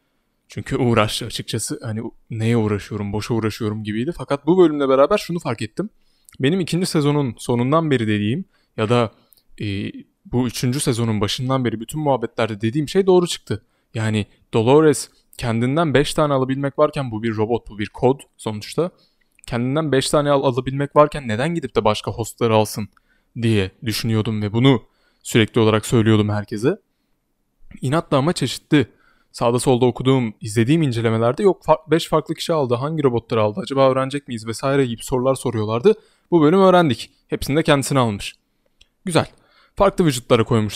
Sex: male